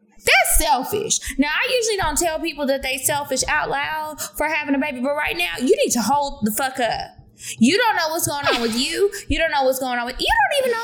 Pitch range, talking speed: 230-330 Hz, 255 wpm